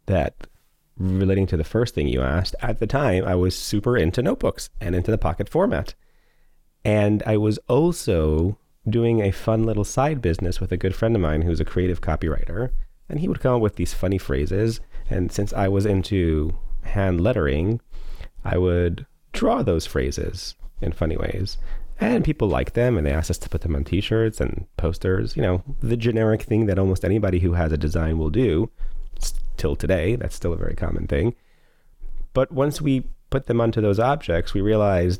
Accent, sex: American, male